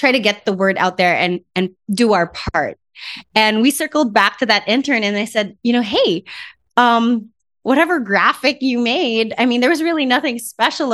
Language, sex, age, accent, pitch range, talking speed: English, female, 20-39, American, 190-240 Hz, 205 wpm